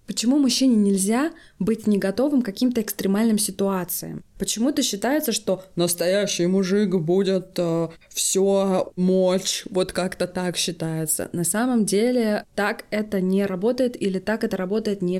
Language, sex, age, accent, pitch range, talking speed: Russian, female, 20-39, native, 180-235 Hz, 135 wpm